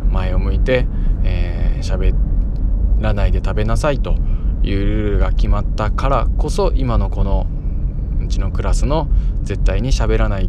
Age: 20-39